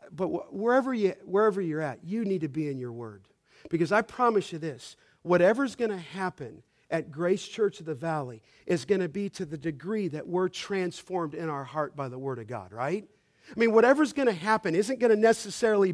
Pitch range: 170-215 Hz